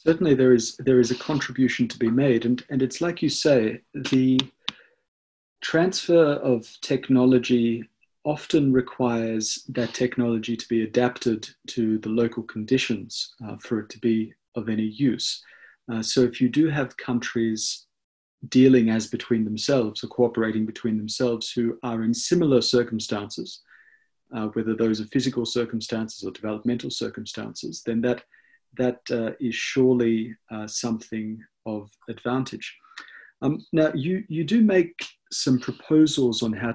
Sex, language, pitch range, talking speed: male, English, 115-130 Hz, 145 wpm